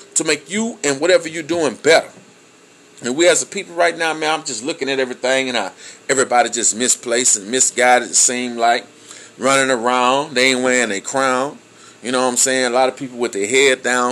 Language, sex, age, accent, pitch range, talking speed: English, male, 30-49, American, 125-165 Hz, 215 wpm